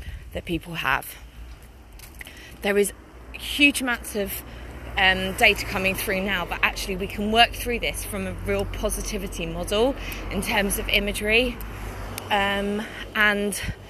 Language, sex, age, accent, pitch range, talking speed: English, female, 20-39, British, 125-210 Hz, 135 wpm